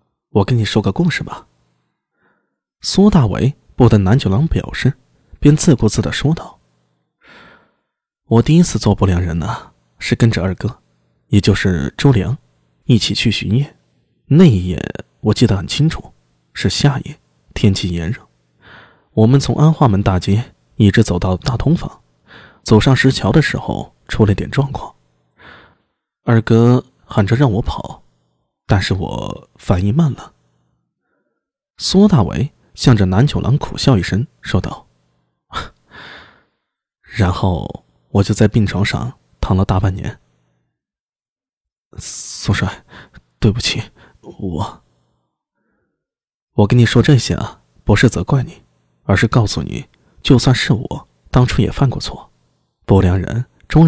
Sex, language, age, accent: male, Chinese, 20-39, native